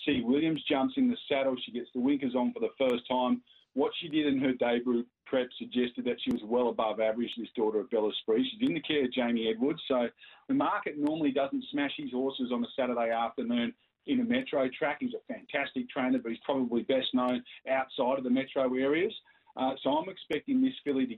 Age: 40-59